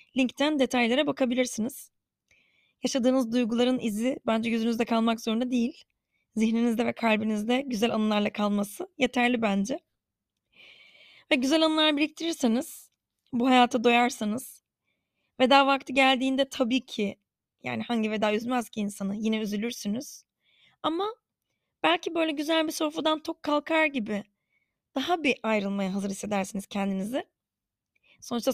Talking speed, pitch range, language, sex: 115 wpm, 225-280 Hz, Turkish, female